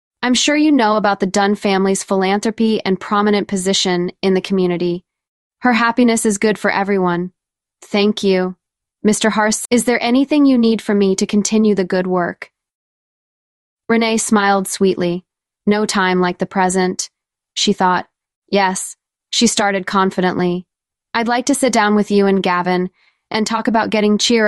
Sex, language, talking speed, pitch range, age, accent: female, English, 160 wpm, 190-220 Hz, 20-39, American